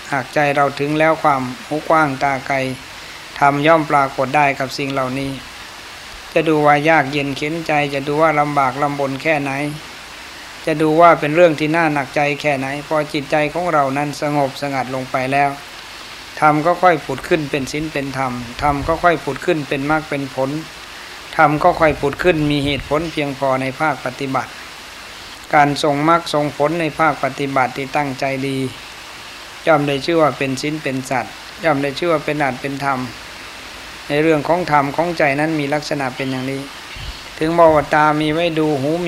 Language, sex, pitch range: Thai, male, 140-155 Hz